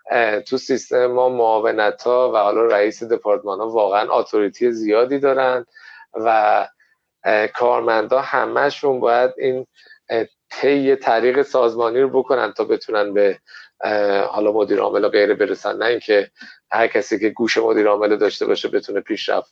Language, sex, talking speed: Persian, male, 130 wpm